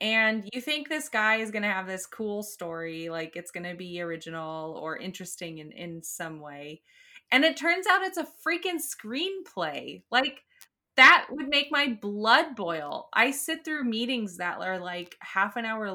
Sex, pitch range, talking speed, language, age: female, 170-230 Hz, 185 wpm, English, 20-39